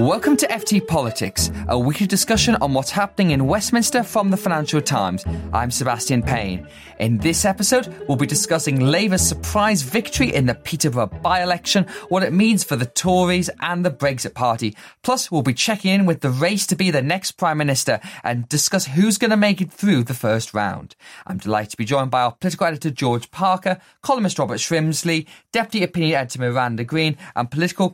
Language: English